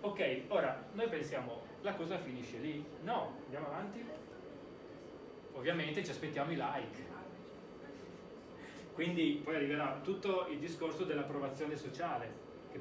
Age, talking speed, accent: 30-49, 115 wpm, native